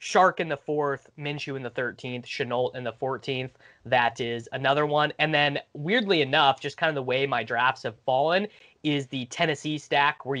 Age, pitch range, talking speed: 20-39, 120-145 Hz, 195 wpm